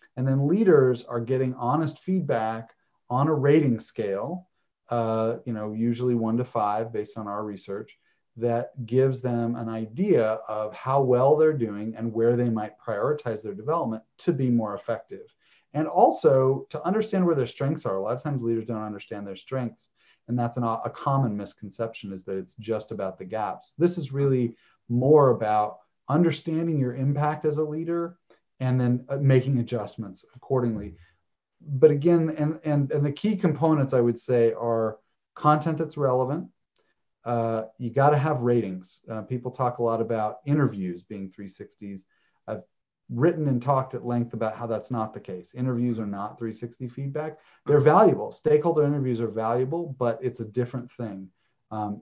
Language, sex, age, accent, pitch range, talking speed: English, male, 40-59, American, 110-145 Hz, 170 wpm